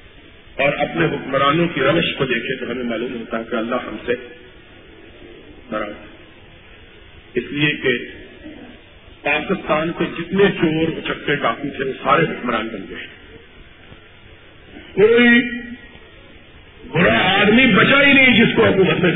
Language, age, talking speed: Urdu, 50-69, 130 wpm